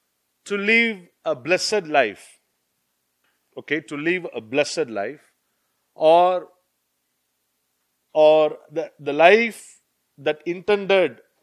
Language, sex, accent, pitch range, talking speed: English, male, Indian, 125-180 Hz, 95 wpm